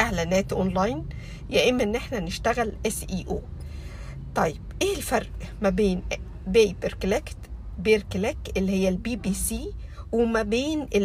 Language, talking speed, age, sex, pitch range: Arabic, 120 wpm, 50-69, female, 195-245 Hz